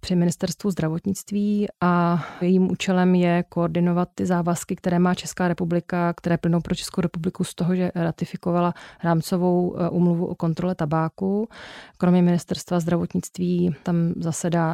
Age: 20-39